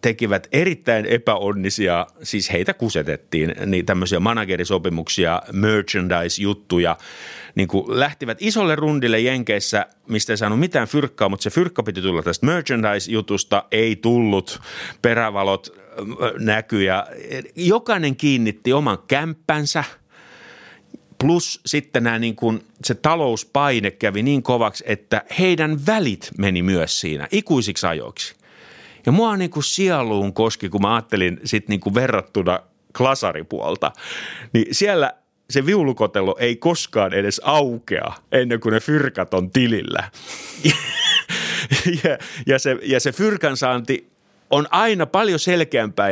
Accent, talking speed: native, 115 wpm